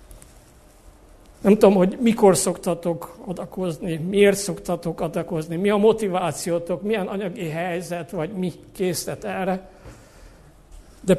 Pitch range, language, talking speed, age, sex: 165-205 Hz, Hungarian, 105 wpm, 50-69, male